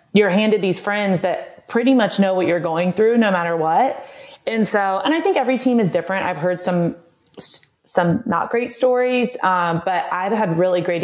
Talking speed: 200 wpm